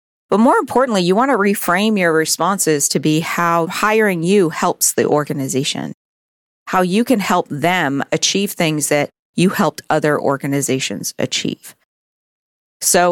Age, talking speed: 40-59, 140 wpm